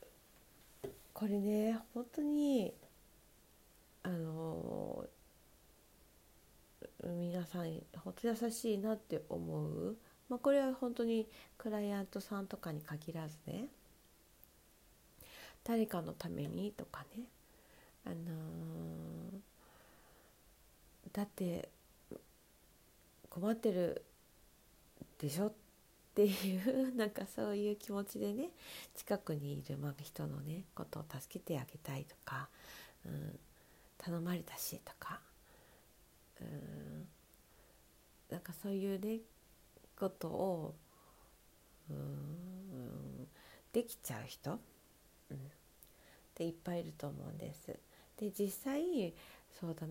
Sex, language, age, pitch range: female, Japanese, 40-59, 155-215 Hz